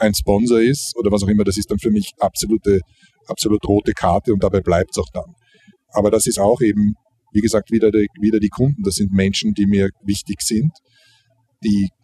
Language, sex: German, male